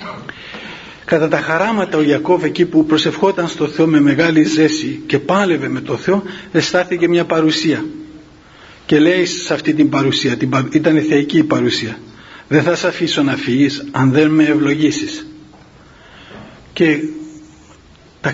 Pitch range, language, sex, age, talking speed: 145-170 Hz, Greek, male, 50-69, 145 wpm